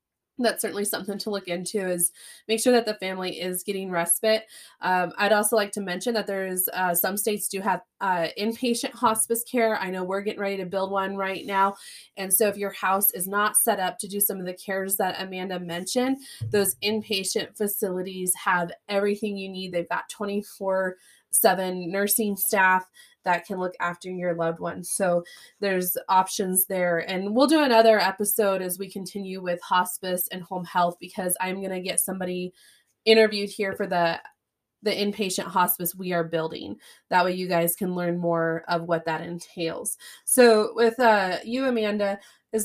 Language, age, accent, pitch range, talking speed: English, 20-39, American, 180-210 Hz, 185 wpm